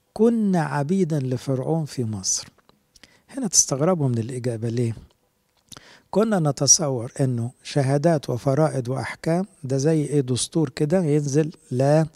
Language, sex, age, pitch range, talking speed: English, male, 60-79, 125-165 Hz, 115 wpm